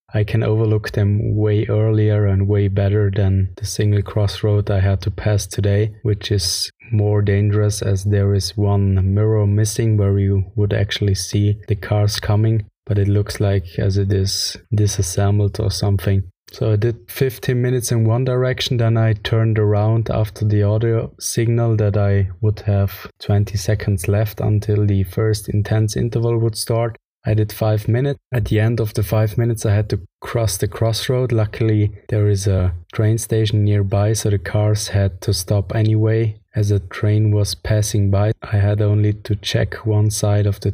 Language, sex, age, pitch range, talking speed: English, male, 20-39, 100-110 Hz, 180 wpm